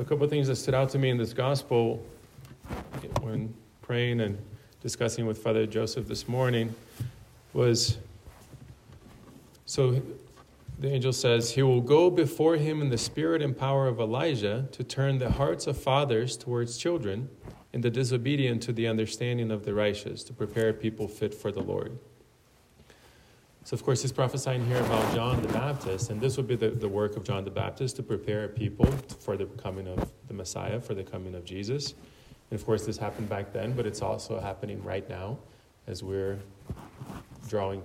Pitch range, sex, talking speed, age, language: 105-130 Hz, male, 180 wpm, 30-49, English